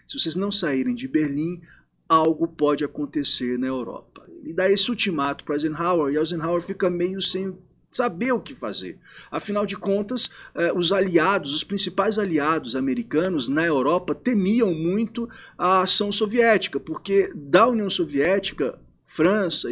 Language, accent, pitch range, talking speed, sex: Portuguese, Brazilian, 145-220 Hz, 145 wpm, male